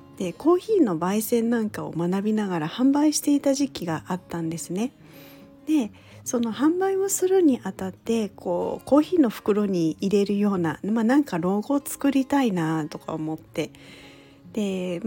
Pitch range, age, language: 175-240 Hz, 40-59, Japanese